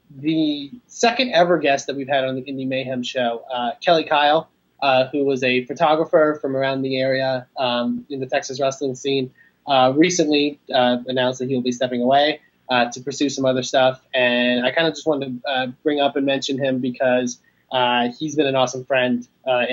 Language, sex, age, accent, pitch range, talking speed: English, male, 20-39, American, 120-140 Hz, 200 wpm